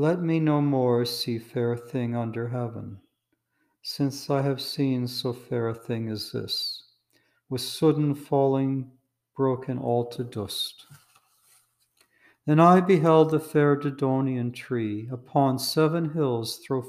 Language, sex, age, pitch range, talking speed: English, male, 60-79, 120-145 Hz, 130 wpm